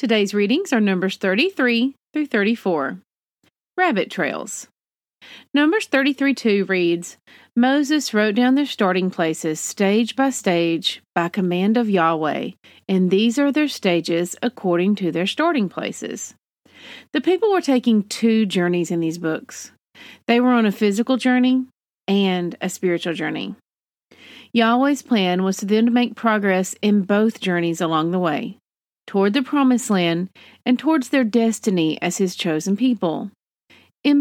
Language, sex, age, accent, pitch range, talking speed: English, female, 40-59, American, 180-255 Hz, 145 wpm